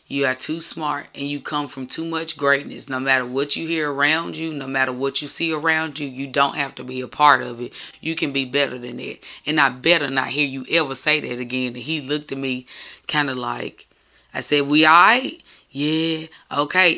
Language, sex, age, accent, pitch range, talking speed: English, female, 20-39, American, 135-165 Hz, 230 wpm